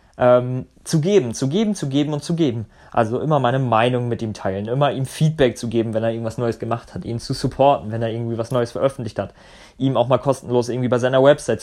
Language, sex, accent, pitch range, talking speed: German, male, German, 120-155 Hz, 230 wpm